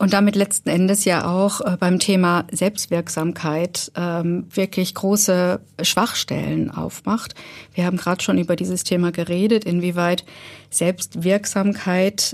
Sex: female